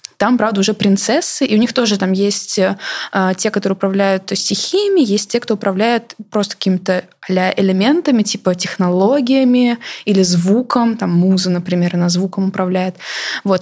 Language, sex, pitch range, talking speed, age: Russian, female, 195-235 Hz, 140 wpm, 20-39